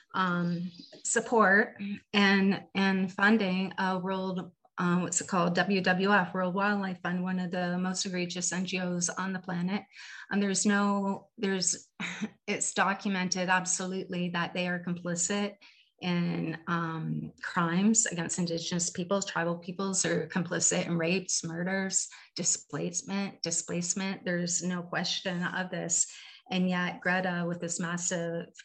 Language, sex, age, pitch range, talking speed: English, female, 30-49, 175-195 Hz, 130 wpm